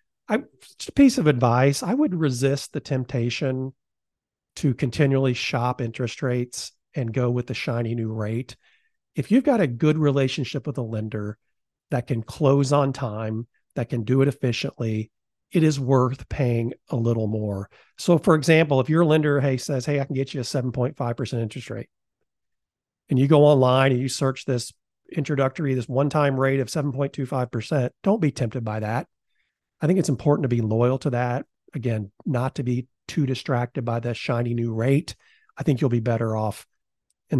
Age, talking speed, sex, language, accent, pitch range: 50-69, 175 wpm, male, English, American, 120-145 Hz